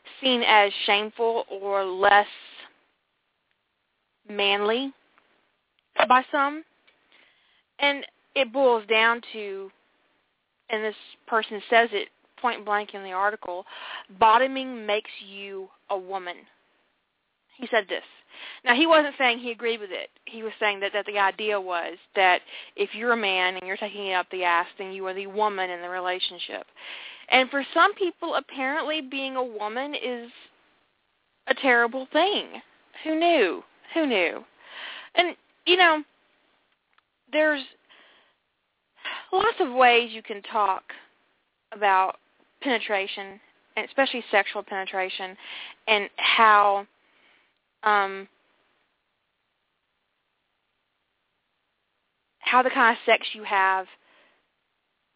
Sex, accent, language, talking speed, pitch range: female, American, English, 120 wpm, 195-260 Hz